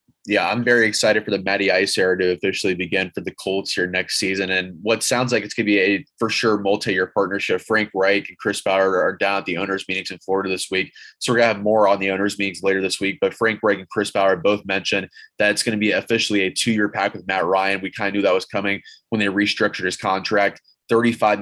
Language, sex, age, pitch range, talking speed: English, male, 20-39, 95-105 Hz, 260 wpm